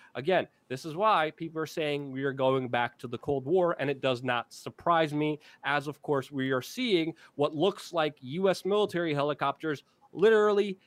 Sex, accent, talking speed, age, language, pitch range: male, American, 190 wpm, 30-49, English, 140-190 Hz